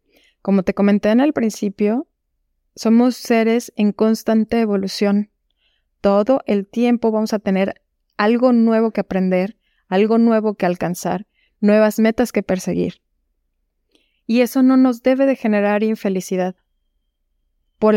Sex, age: female, 20-39